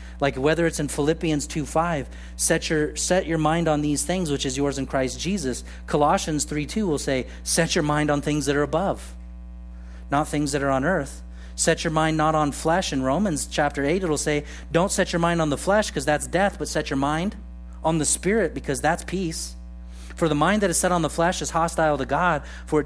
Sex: male